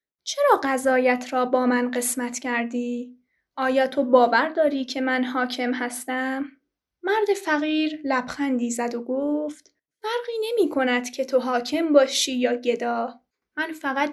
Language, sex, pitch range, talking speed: Persian, female, 250-295 Hz, 135 wpm